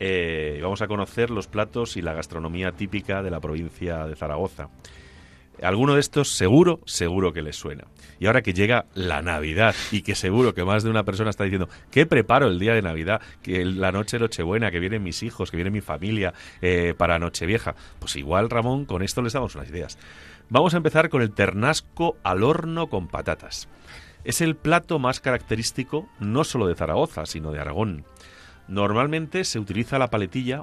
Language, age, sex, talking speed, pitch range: Spanish, 40-59, male, 190 wpm, 85-115 Hz